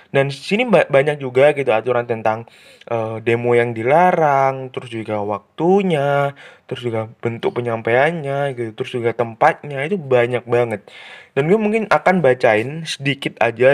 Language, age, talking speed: Indonesian, 20-39, 140 wpm